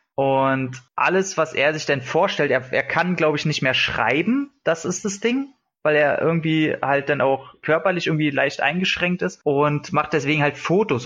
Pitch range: 135-160 Hz